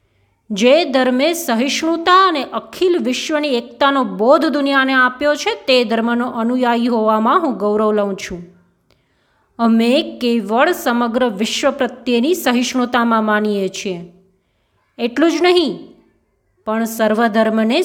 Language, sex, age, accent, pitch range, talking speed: Gujarati, female, 20-39, native, 210-275 Hz, 110 wpm